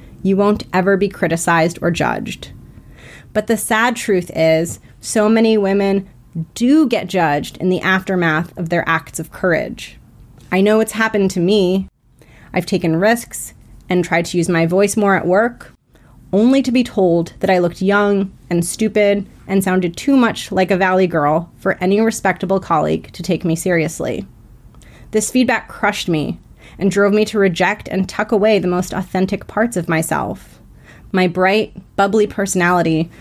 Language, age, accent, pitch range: English, 30-49, American, 170-205 Hz